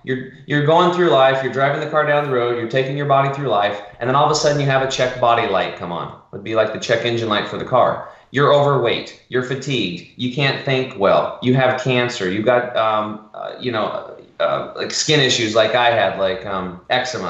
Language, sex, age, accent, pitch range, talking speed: English, male, 20-39, American, 120-145 Hz, 245 wpm